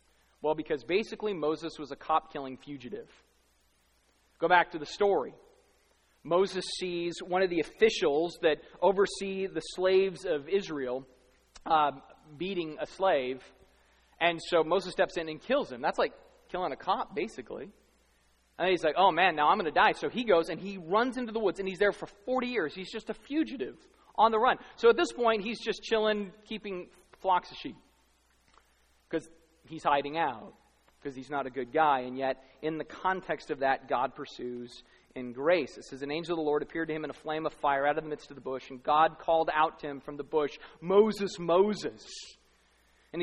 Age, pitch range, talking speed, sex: 30-49, 140-200 Hz, 195 wpm, male